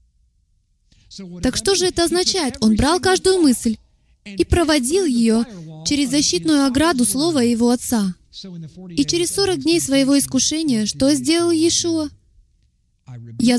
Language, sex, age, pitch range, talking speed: Russian, female, 20-39, 230-315 Hz, 125 wpm